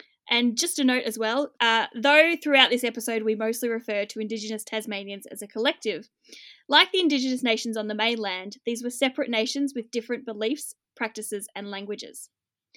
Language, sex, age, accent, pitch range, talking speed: English, female, 10-29, Australian, 220-275 Hz, 175 wpm